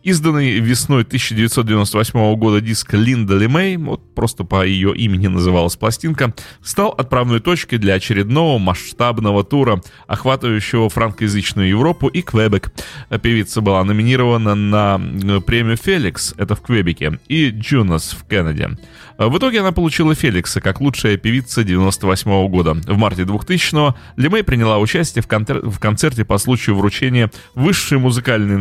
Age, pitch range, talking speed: 30-49, 100-130 Hz, 135 wpm